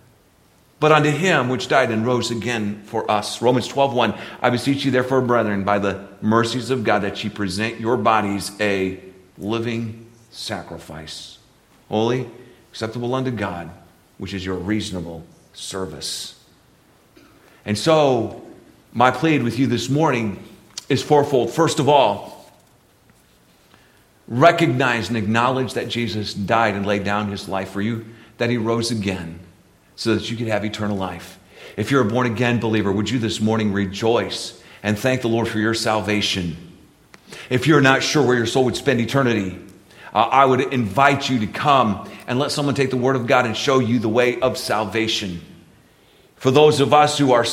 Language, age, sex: English, 40-59, male